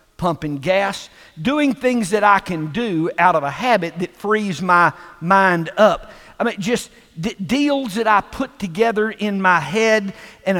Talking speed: 165 wpm